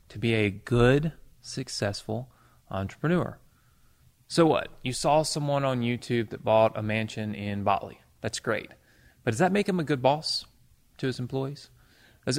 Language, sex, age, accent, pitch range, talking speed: English, male, 30-49, American, 120-150 Hz, 160 wpm